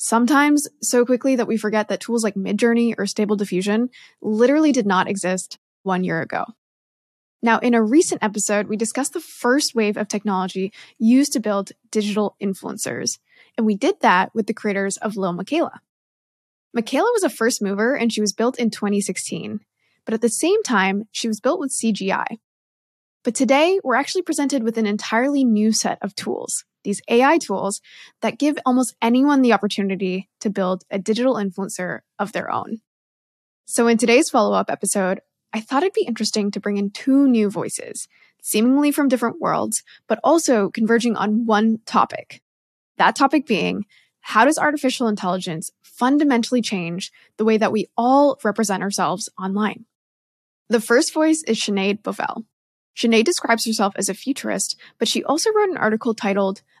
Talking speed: 170 wpm